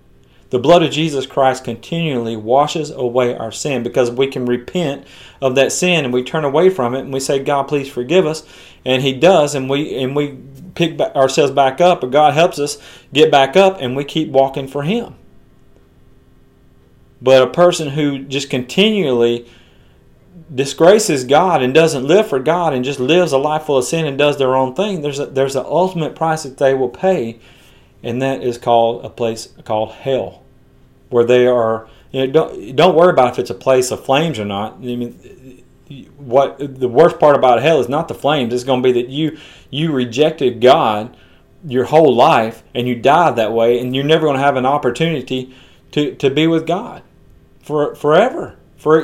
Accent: American